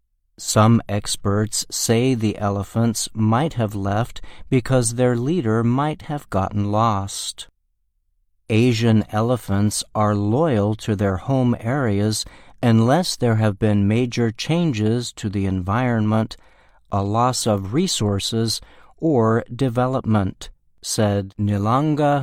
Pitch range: 100-125 Hz